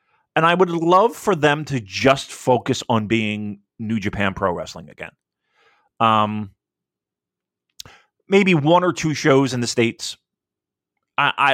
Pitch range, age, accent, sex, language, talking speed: 100-145 Hz, 30-49, American, male, English, 135 wpm